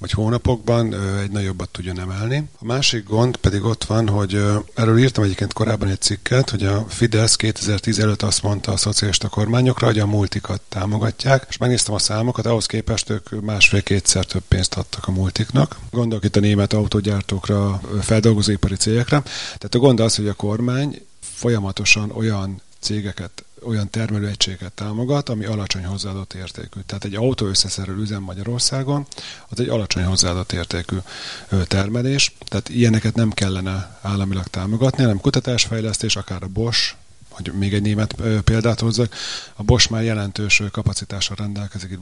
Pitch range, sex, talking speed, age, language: 100-120 Hz, male, 155 wpm, 30-49, Hungarian